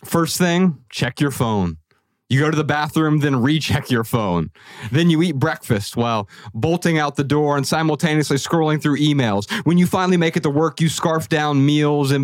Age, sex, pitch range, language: 30-49, male, 120-150 Hz, English